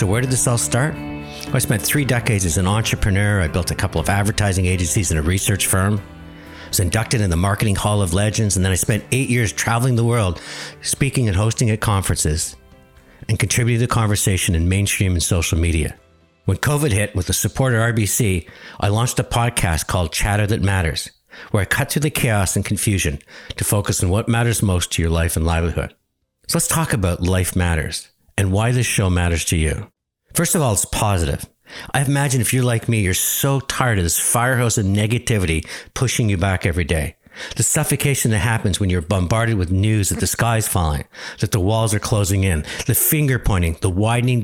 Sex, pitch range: male, 90-120 Hz